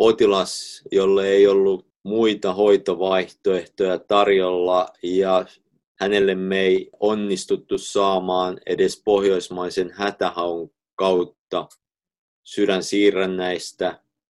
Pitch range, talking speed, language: 90-120 Hz, 75 wpm, Finnish